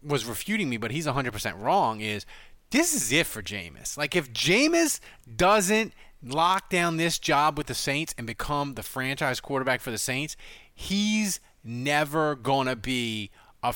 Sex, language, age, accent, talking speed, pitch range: male, English, 30-49, American, 165 wpm, 120-185 Hz